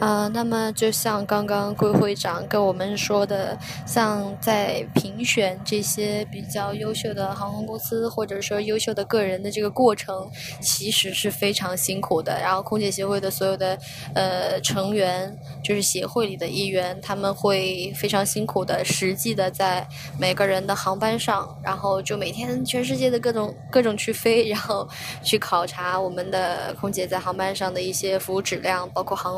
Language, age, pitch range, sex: Chinese, 10-29, 180-210 Hz, female